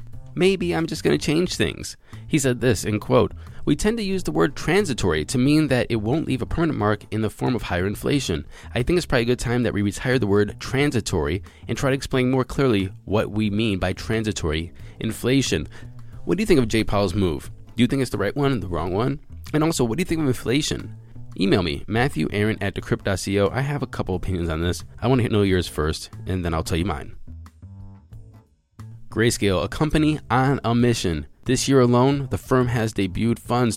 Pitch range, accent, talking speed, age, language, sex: 95-125 Hz, American, 220 wpm, 20-39, English, male